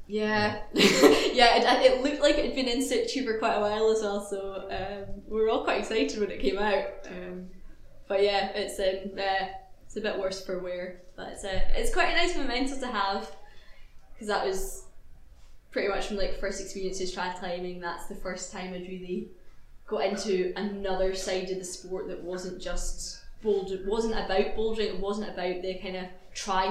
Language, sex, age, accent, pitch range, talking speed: English, female, 10-29, British, 185-215 Hz, 200 wpm